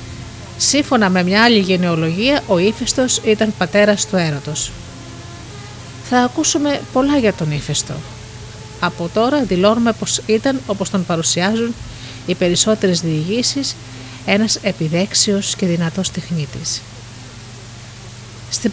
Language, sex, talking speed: Greek, female, 110 wpm